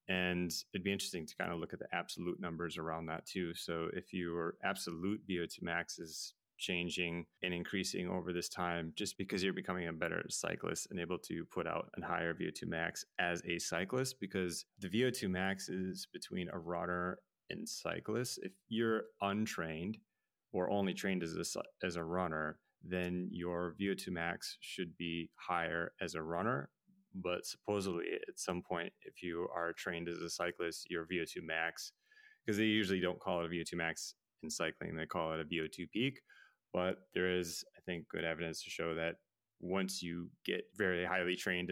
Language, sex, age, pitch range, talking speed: English, male, 30-49, 85-100 Hz, 180 wpm